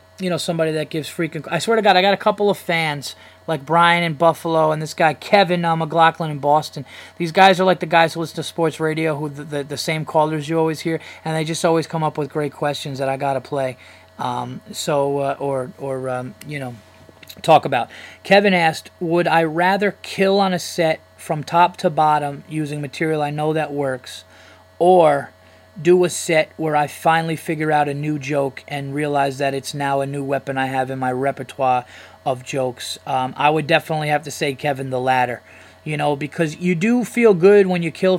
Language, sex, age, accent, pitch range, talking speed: English, male, 20-39, American, 135-170 Hz, 215 wpm